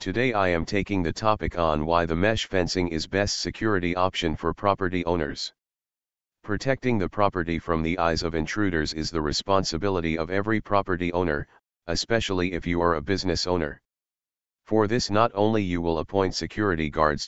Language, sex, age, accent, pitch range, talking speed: English, male, 40-59, American, 80-100 Hz, 170 wpm